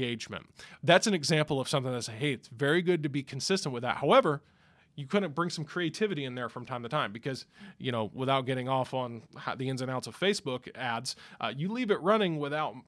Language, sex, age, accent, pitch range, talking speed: English, male, 20-39, American, 130-170 Hz, 225 wpm